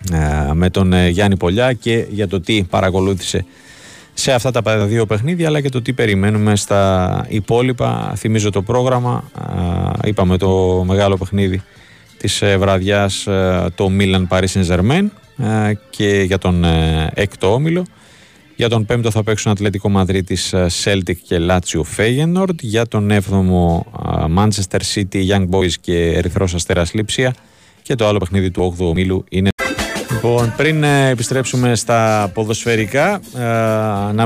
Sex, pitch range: male, 95-115 Hz